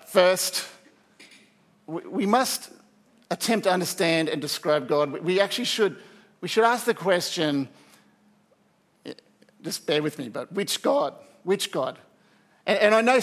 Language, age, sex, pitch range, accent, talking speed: English, 50-69, male, 185-220 Hz, Australian, 130 wpm